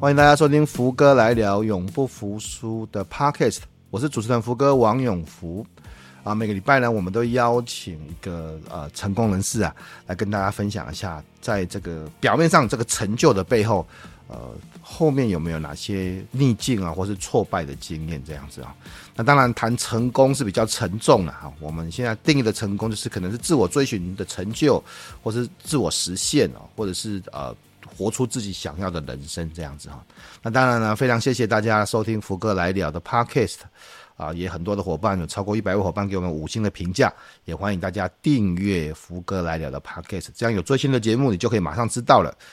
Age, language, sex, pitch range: 30-49, Chinese, male, 90-120 Hz